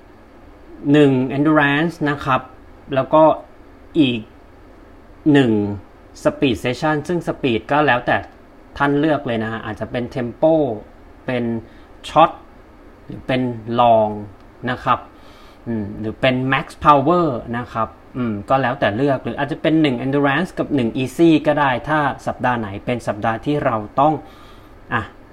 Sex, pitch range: male, 115-150 Hz